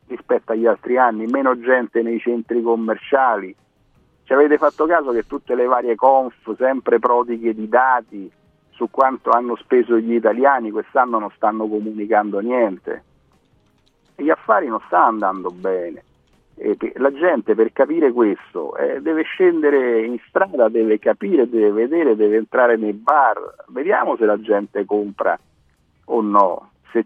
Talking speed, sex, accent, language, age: 140 wpm, male, native, Italian, 50-69